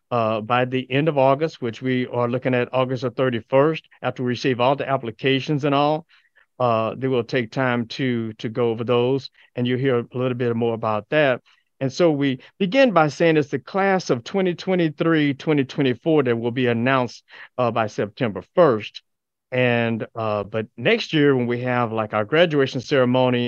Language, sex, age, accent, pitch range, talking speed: English, male, 50-69, American, 115-140 Hz, 185 wpm